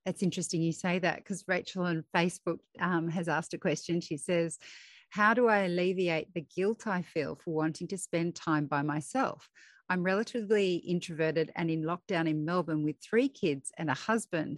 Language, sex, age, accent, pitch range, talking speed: English, female, 40-59, Australian, 160-195 Hz, 185 wpm